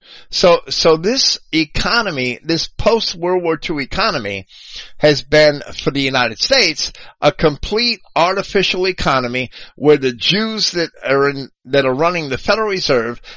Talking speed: 140 wpm